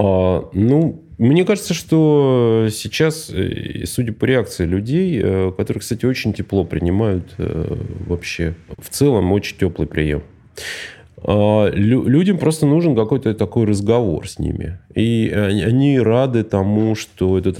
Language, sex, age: Russian, male, 30-49